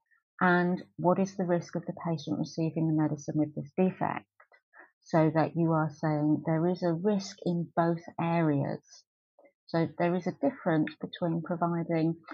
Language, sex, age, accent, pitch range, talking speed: English, female, 40-59, British, 155-185 Hz, 160 wpm